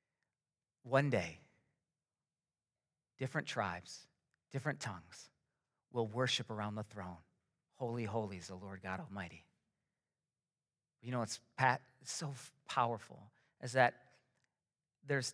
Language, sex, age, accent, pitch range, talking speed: English, male, 40-59, American, 140-195 Hz, 110 wpm